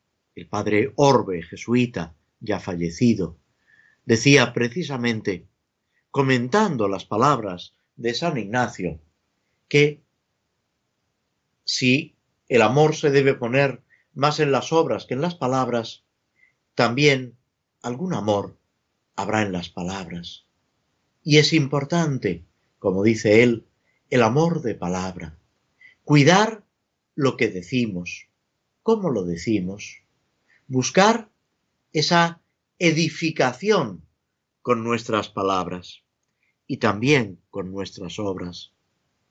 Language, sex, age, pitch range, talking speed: Spanish, male, 50-69, 100-145 Hz, 100 wpm